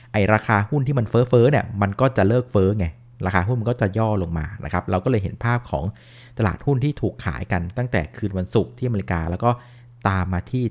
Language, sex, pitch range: Thai, male, 100-125 Hz